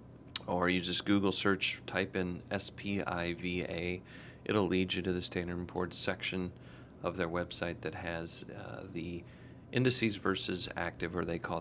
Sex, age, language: male, 40-59, English